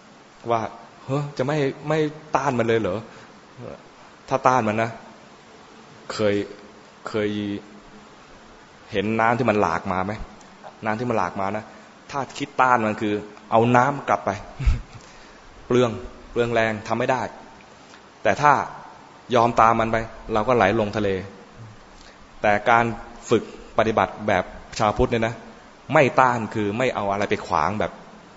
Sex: male